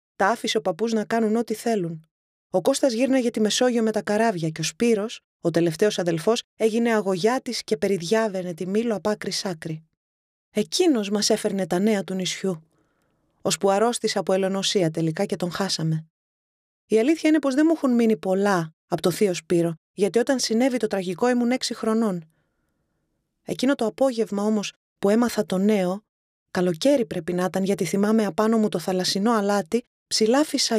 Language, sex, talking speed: Greek, female, 170 wpm